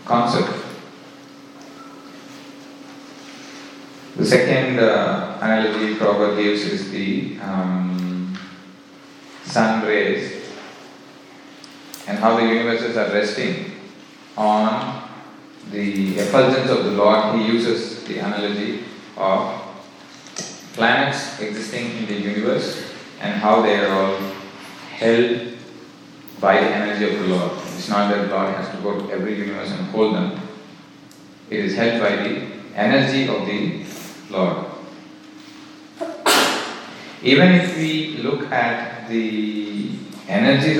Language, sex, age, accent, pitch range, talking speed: English, male, 30-49, Indian, 100-140 Hz, 110 wpm